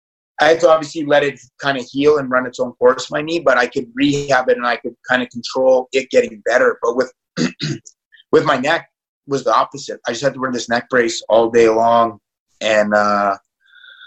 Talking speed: 215 wpm